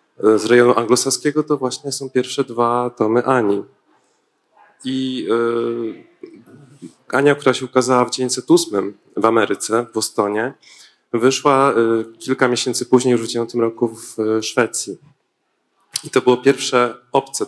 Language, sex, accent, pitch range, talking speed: Polish, male, native, 115-145 Hz, 130 wpm